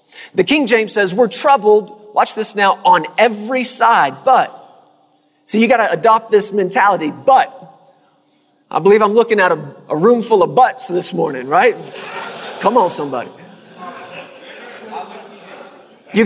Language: English